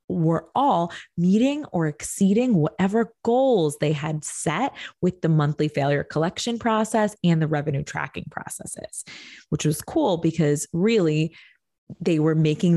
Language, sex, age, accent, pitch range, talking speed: English, female, 20-39, American, 160-235 Hz, 135 wpm